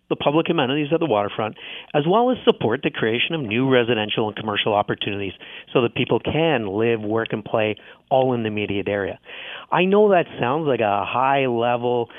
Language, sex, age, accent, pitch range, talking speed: English, male, 50-69, American, 115-150 Hz, 185 wpm